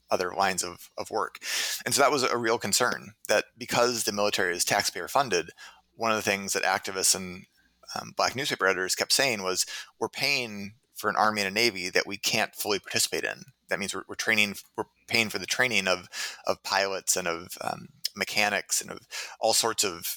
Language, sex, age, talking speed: English, male, 30-49, 200 wpm